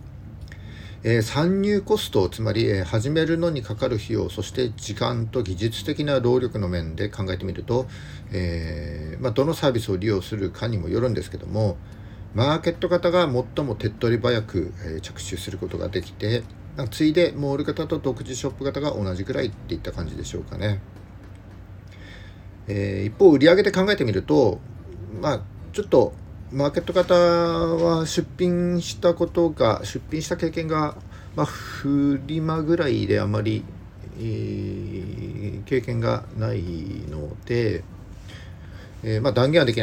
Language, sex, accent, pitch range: Japanese, male, native, 95-135 Hz